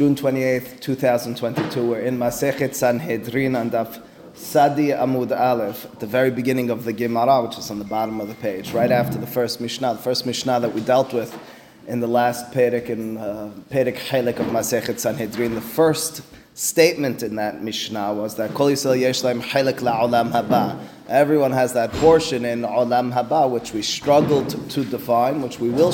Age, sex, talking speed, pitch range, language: 20-39, male, 165 wpm, 120-140 Hz, English